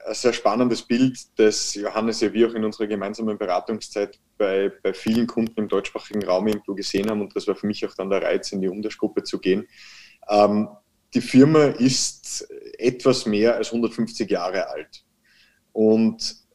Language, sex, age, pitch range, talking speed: German, male, 20-39, 105-125 Hz, 175 wpm